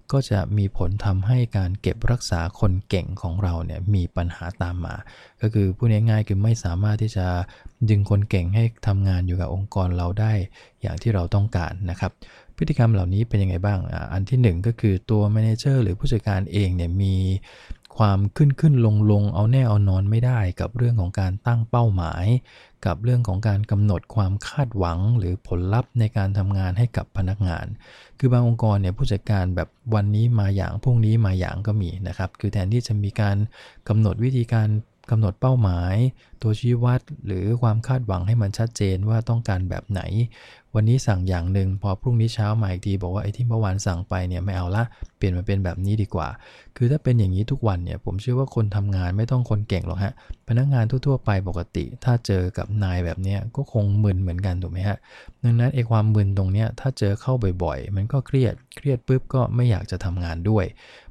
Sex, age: male, 20-39